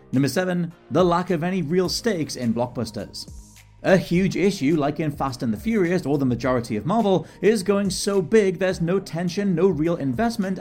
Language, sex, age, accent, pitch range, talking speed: English, male, 30-49, British, 140-195 Hz, 190 wpm